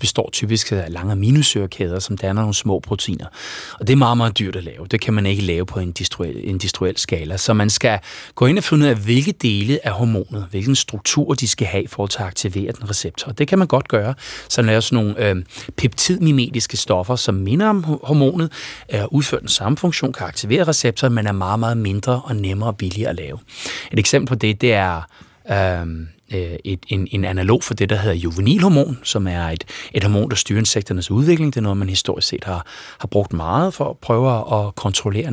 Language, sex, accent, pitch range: Danish, male, native, 100-125 Hz